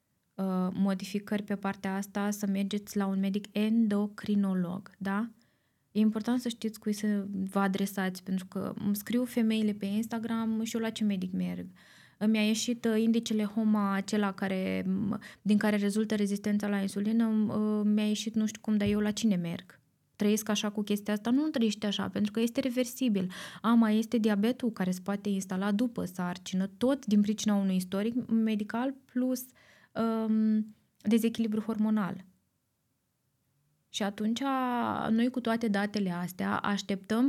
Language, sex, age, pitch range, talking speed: Romanian, female, 20-39, 195-225 Hz, 150 wpm